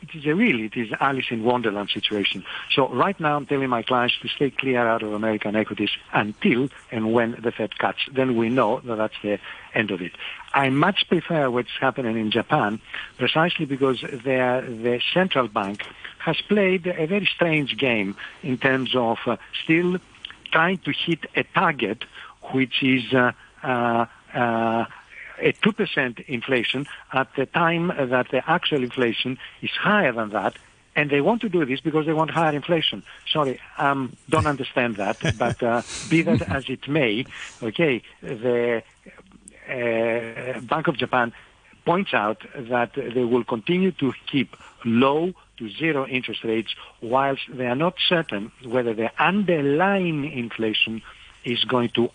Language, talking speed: English, 160 wpm